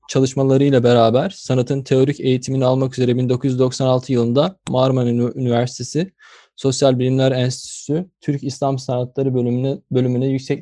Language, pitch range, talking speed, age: English, 130-145 Hz, 105 wpm, 20-39